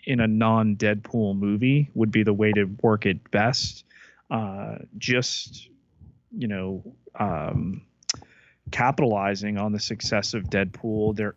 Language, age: English, 30-49